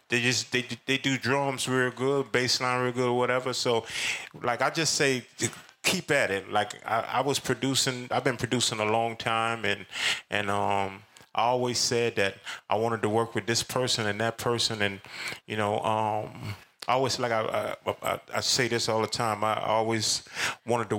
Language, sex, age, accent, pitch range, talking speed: English, male, 30-49, American, 105-125 Hz, 195 wpm